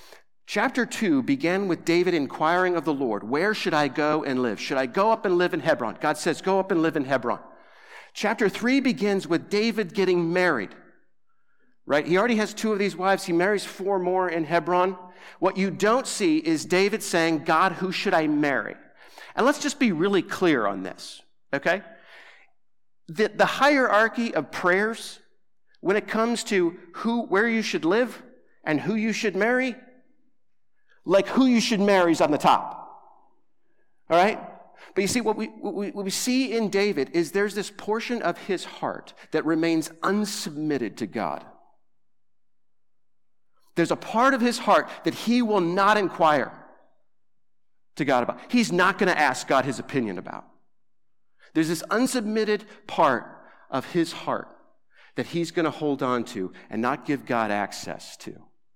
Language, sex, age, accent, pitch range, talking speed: English, male, 50-69, American, 170-230 Hz, 170 wpm